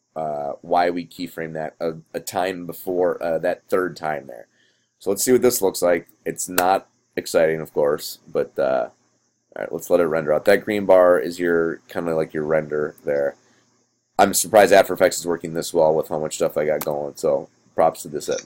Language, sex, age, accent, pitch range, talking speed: English, male, 30-49, American, 85-115 Hz, 215 wpm